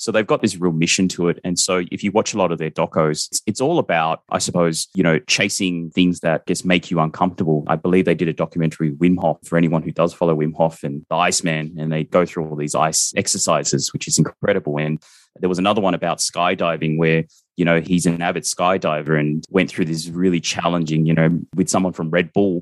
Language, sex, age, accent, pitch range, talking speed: English, male, 20-39, Australian, 80-95 Hz, 235 wpm